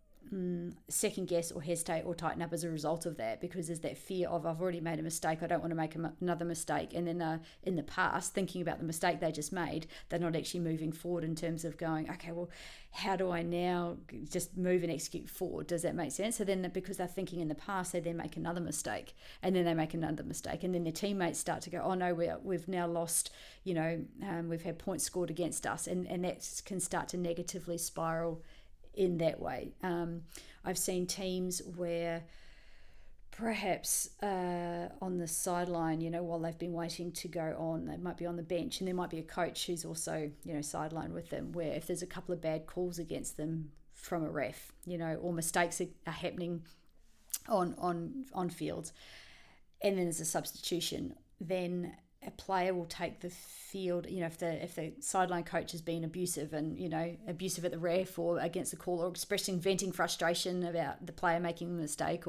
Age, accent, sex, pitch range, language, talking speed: 40-59, Australian, female, 165-180 Hz, English, 215 wpm